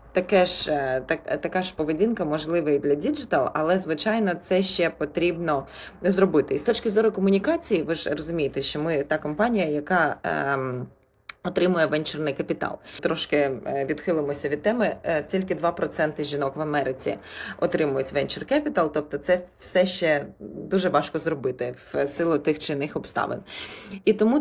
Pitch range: 150-195 Hz